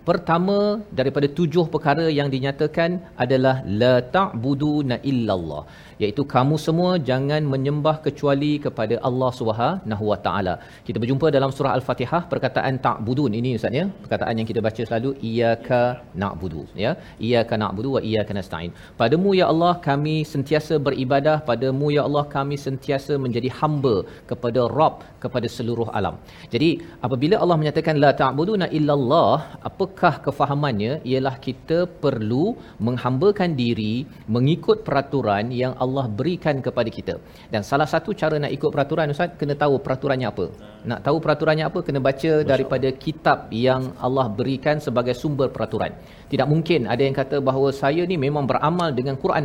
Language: Malayalam